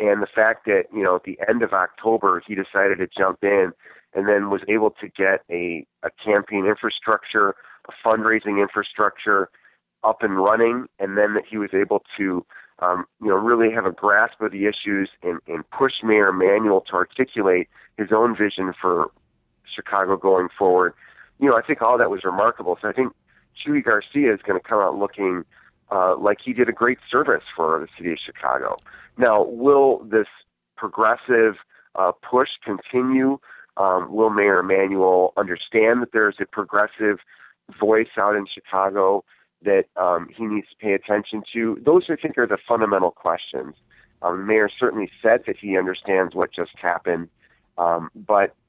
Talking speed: 175 wpm